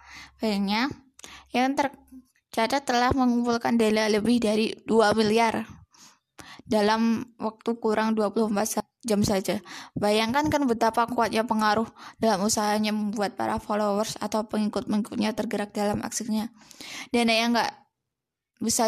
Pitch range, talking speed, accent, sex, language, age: 210-240 Hz, 110 wpm, native, female, Indonesian, 10-29